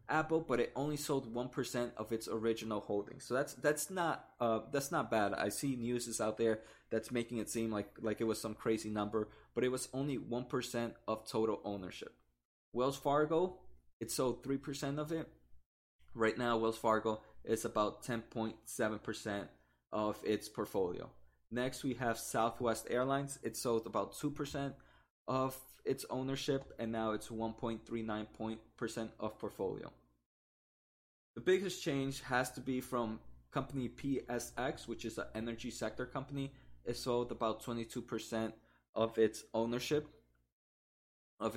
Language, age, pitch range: English, 20-39, 110-130 Hz